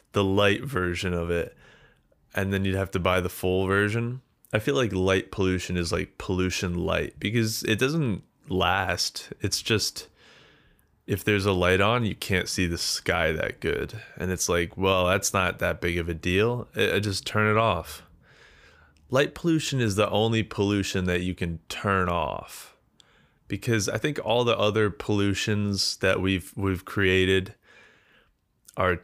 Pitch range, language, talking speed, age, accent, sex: 90-110 Hz, English, 165 wpm, 20-39, American, male